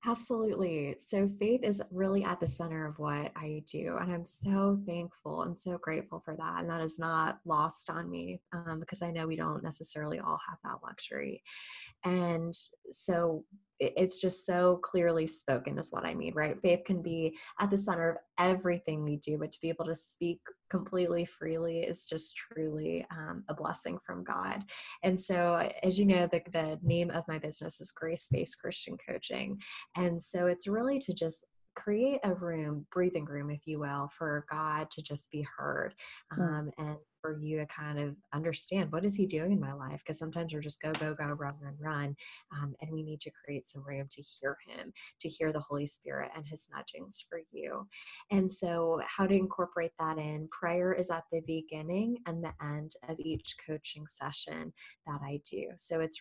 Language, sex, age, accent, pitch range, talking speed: English, female, 10-29, American, 150-180 Hz, 195 wpm